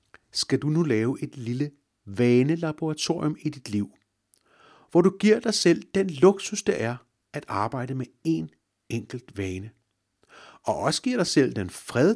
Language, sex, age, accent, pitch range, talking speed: Danish, male, 60-79, native, 105-165 Hz, 160 wpm